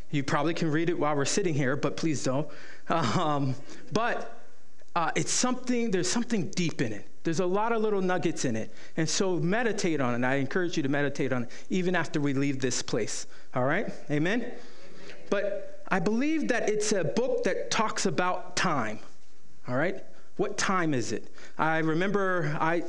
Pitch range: 145-195 Hz